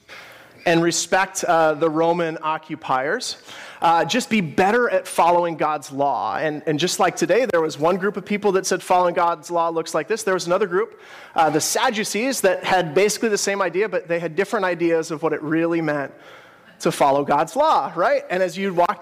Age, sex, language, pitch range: 30-49, male, English, 160-200 Hz